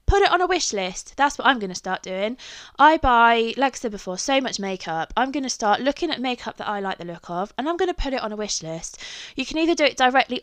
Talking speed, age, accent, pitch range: 295 wpm, 20-39, British, 195-255 Hz